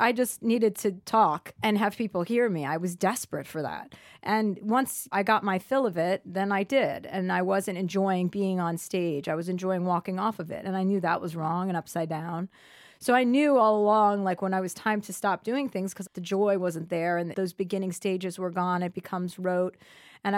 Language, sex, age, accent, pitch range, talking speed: English, female, 30-49, American, 180-225 Hz, 230 wpm